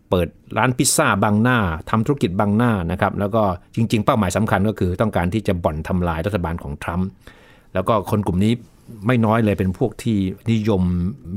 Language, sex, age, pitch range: Thai, male, 60-79, 95-120 Hz